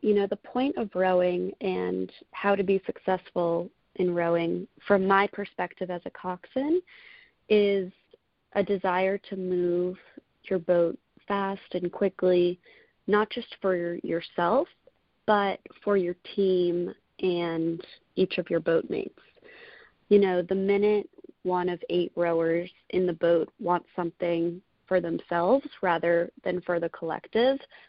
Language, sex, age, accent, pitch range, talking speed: English, female, 30-49, American, 175-200 Hz, 135 wpm